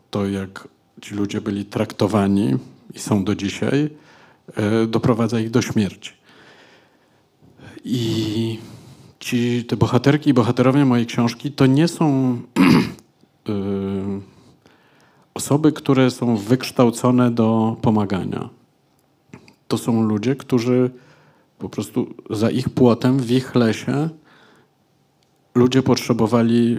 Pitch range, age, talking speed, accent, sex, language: 105-130 Hz, 50-69, 100 wpm, native, male, Polish